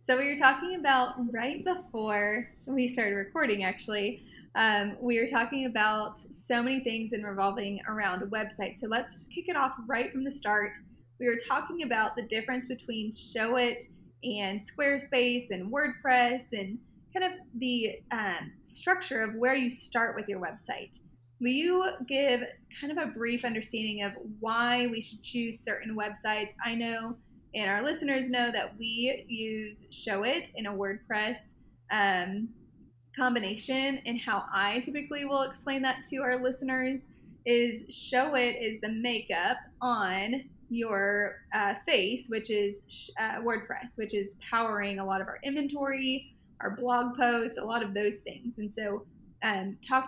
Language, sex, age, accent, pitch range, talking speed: English, female, 20-39, American, 210-255 Hz, 155 wpm